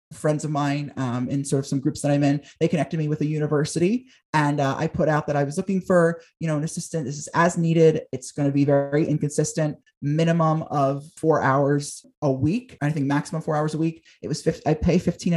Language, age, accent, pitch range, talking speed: English, 30-49, American, 140-165 Hz, 240 wpm